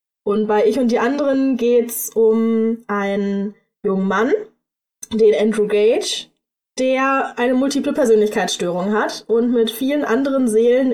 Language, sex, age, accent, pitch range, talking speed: German, female, 10-29, German, 215-255 Hz, 135 wpm